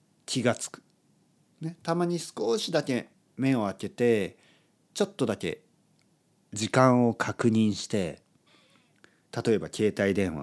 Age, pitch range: 40-59, 95-135 Hz